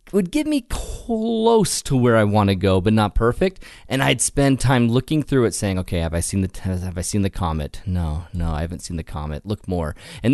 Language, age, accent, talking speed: English, 30-49, American, 245 wpm